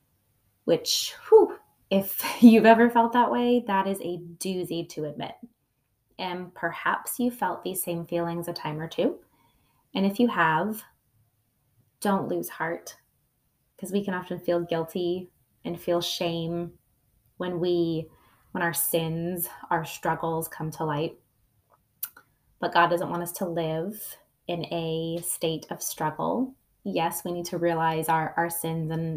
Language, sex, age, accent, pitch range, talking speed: English, female, 20-39, American, 160-190 Hz, 145 wpm